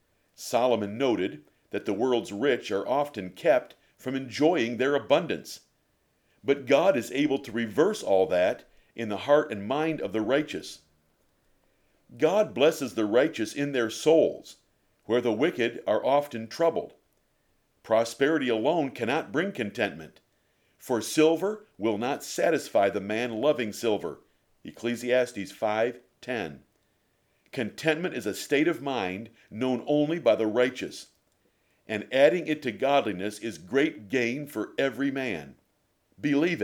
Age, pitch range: 50-69, 110-145 Hz